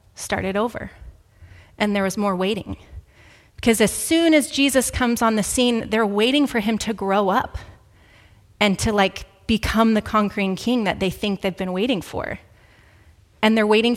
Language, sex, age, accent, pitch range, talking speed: English, female, 30-49, American, 195-245 Hz, 170 wpm